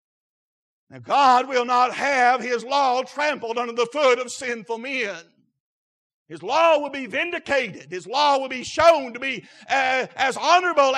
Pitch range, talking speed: 235-285 Hz, 160 wpm